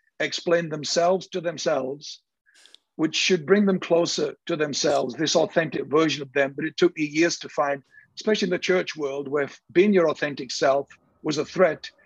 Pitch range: 155-185 Hz